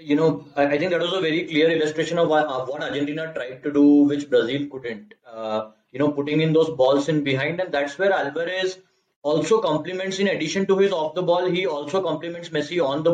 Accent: Indian